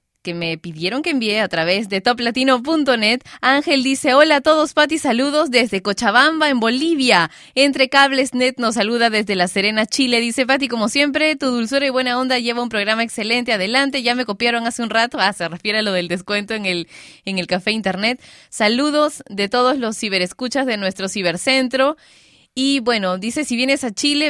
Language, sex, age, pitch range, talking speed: Spanish, female, 20-39, 210-275 Hz, 190 wpm